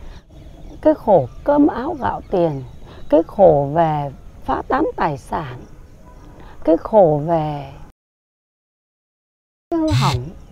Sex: female